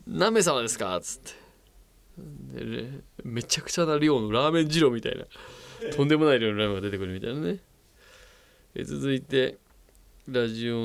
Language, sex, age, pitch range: Japanese, male, 20-39, 105-160 Hz